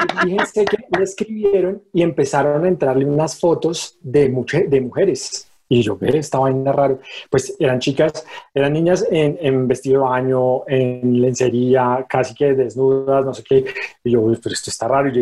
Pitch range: 130-175 Hz